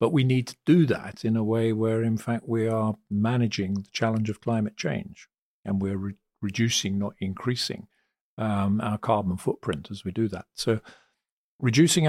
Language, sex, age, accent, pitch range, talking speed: English, male, 50-69, British, 95-110 Hz, 175 wpm